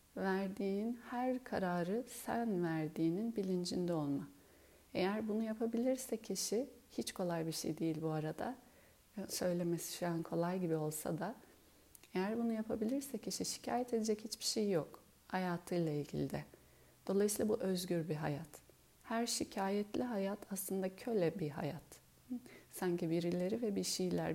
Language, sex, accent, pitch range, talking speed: Turkish, female, native, 165-220 Hz, 135 wpm